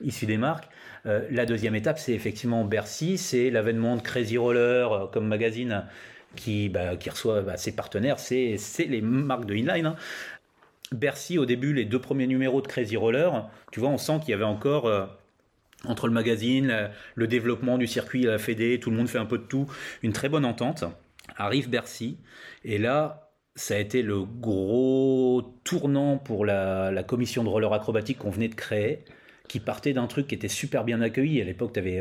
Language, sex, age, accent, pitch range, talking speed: French, male, 30-49, French, 110-140 Hz, 200 wpm